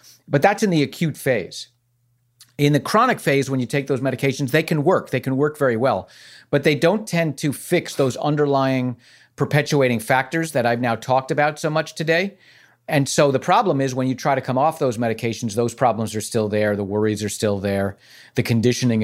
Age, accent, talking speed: 40-59, American, 210 wpm